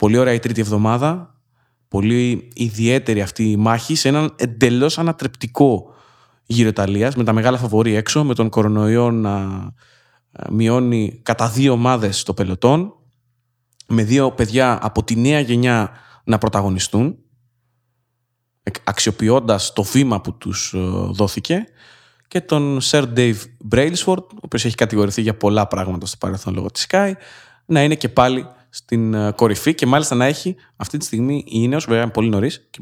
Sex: male